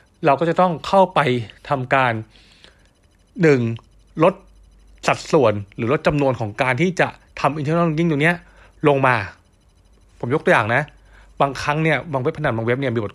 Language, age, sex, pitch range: Thai, 20-39, male, 115-155 Hz